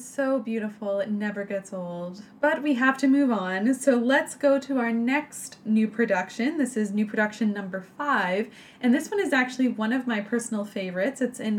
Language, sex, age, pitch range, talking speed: English, female, 20-39, 195-245 Hz, 195 wpm